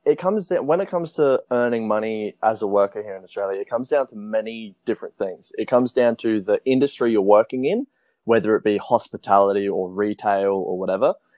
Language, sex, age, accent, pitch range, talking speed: Portuguese, male, 20-39, Australian, 100-130 Hz, 205 wpm